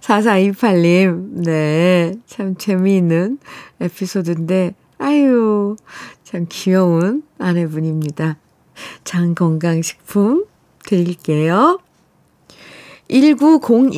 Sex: female